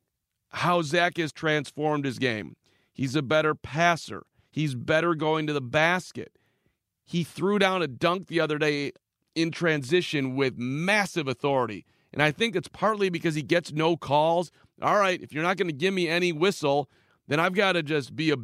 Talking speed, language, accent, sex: 185 wpm, English, American, male